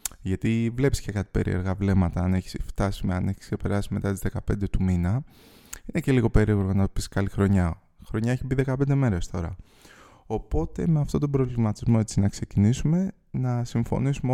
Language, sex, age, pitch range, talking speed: Greek, male, 20-39, 100-150 Hz, 180 wpm